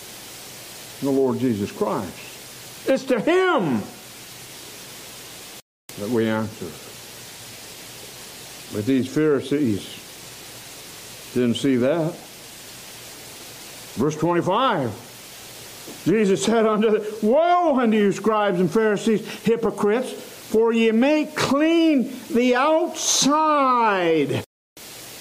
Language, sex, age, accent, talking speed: English, male, 60-79, American, 85 wpm